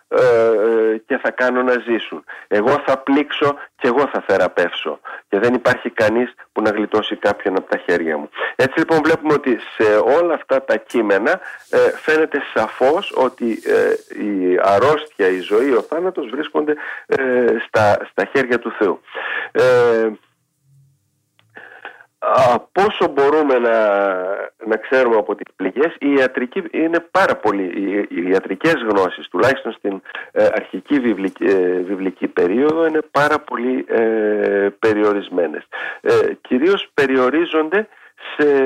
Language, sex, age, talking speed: Greek, male, 40-59, 125 wpm